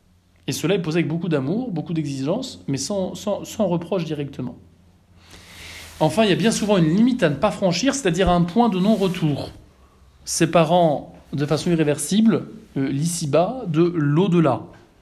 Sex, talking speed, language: male, 160 wpm, French